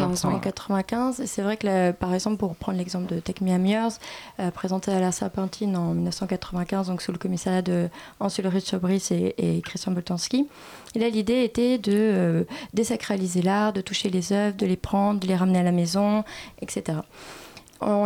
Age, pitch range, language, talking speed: 20-39, 185-230 Hz, French, 190 wpm